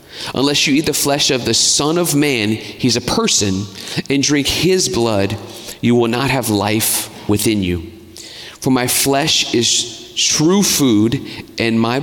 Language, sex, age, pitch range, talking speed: English, male, 40-59, 105-135 Hz, 160 wpm